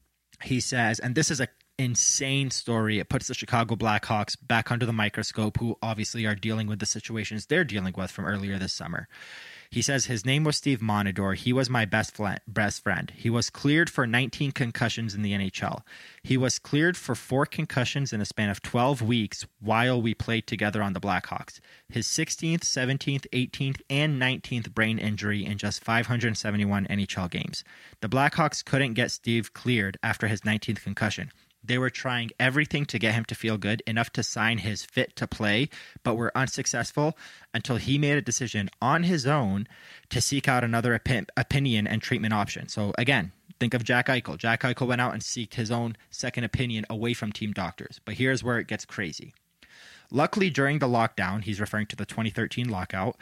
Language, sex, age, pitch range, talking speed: English, male, 20-39, 105-130 Hz, 185 wpm